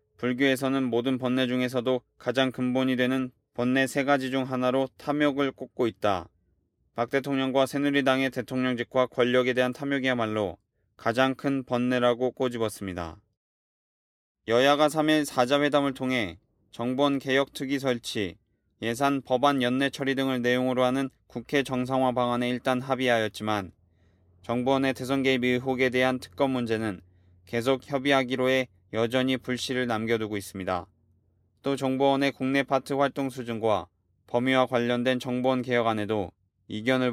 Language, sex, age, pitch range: Korean, male, 20-39, 110-130 Hz